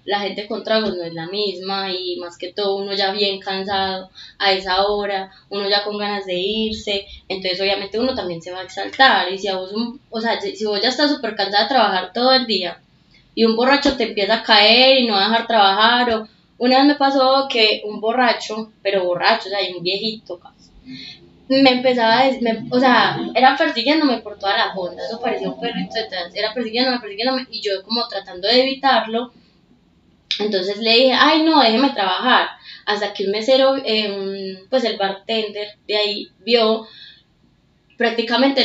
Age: 20-39